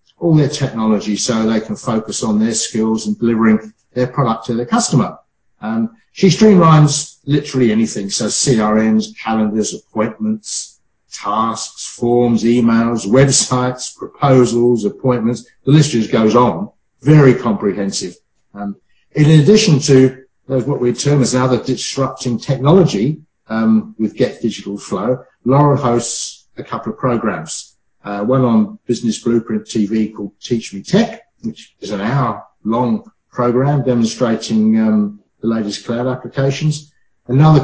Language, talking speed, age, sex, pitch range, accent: English, 135 wpm, 50-69, male, 110-140 Hz, British